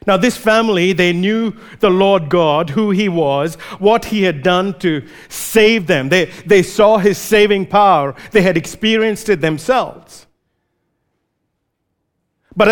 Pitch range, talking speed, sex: 170-220 Hz, 140 wpm, male